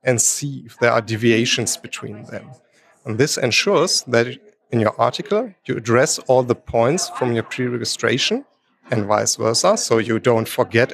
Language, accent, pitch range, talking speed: German, German, 115-145 Hz, 165 wpm